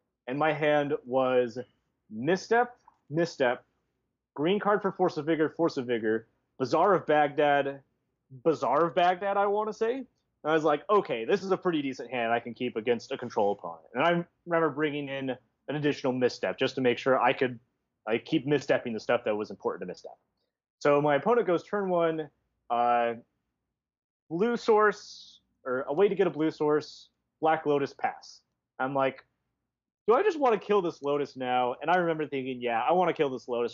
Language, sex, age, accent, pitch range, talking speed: English, male, 30-49, American, 125-165 Hz, 195 wpm